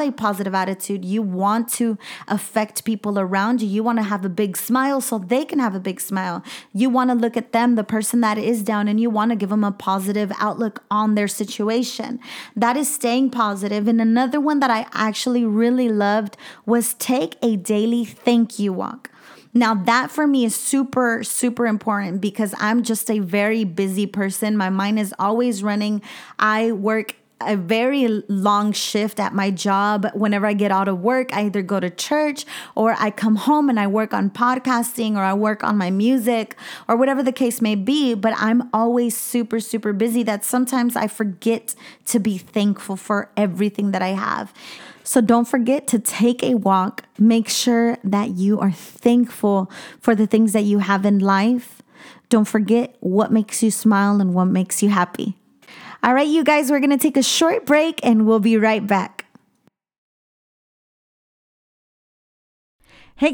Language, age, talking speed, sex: English, 30-49, 185 wpm, female